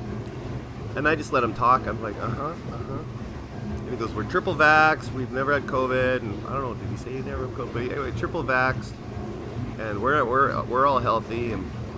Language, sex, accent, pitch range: English, male, American, 110-130 Hz